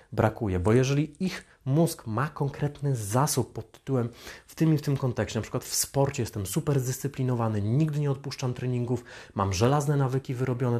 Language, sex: Polish, male